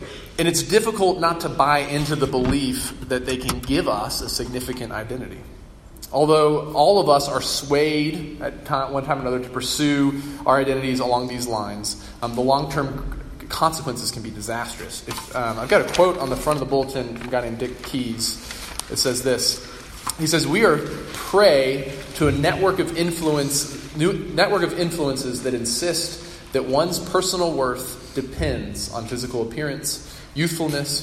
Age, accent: 20-39, American